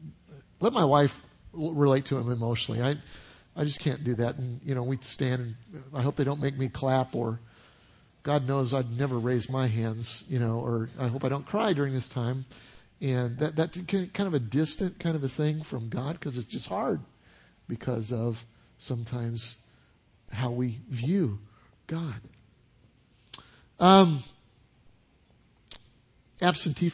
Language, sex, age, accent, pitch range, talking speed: English, male, 50-69, American, 120-160 Hz, 160 wpm